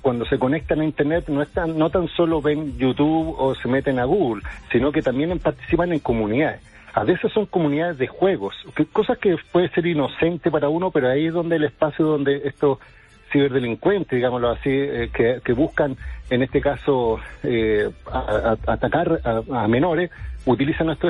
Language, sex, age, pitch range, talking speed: Spanish, male, 50-69, 135-170 Hz, 170 wpm